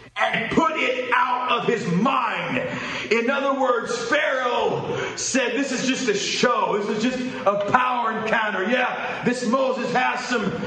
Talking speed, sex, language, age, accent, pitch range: 160 wpm, male, English, 40-59, American, 240-270 Hz